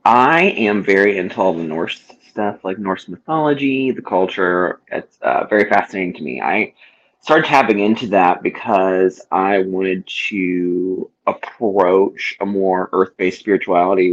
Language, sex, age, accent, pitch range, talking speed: English, male, 30-49, American, 95-105 Hz, 140 wpm